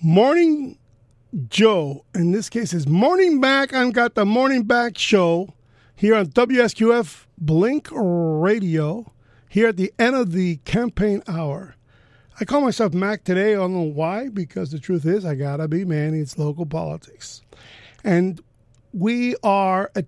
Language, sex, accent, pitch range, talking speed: English, male, American, 160-215 Hz, 150 wpm